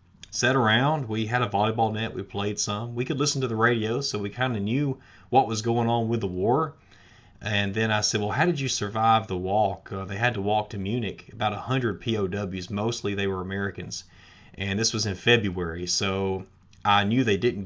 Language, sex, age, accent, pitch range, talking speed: English, male, 30-49, American, 95-115 Hz, 210 wpm